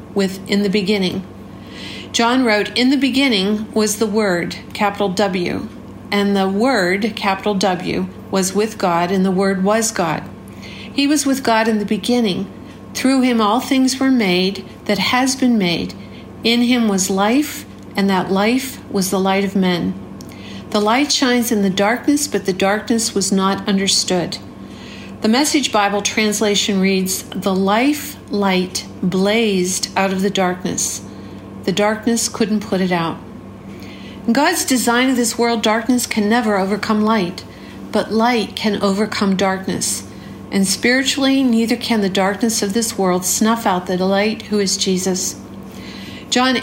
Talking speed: 155 wpm